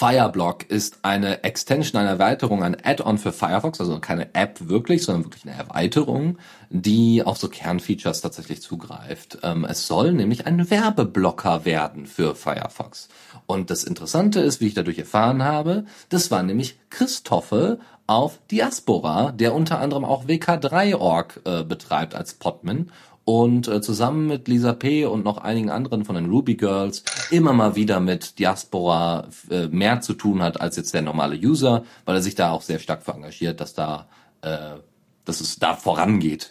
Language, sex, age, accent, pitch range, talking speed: German, male, 40-59, German, 95-130 Hz, 165 wpm